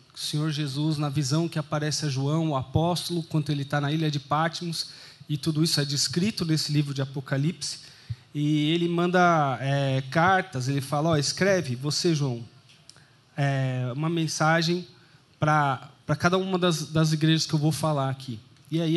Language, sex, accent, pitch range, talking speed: Portuguese, male, Brazilian, 140-165 Hz, 170 wpm